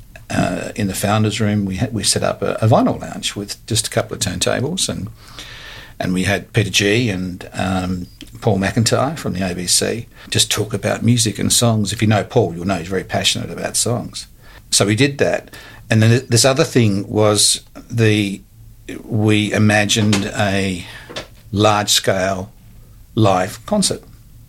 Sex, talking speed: male, 165 wpm